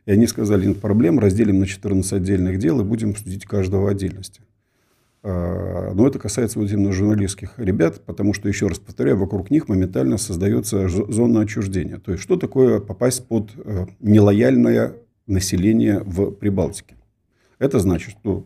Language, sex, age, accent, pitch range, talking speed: Russian, male, 50-69, native, 95-115 Hz, 155 wpm